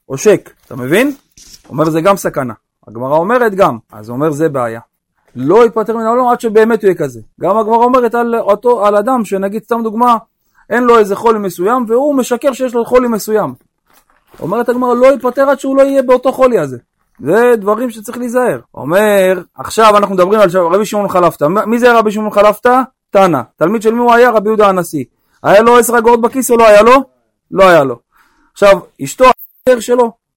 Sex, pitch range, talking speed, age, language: male, 165-245 Hz, 160 wpm, 30-49, Hebrew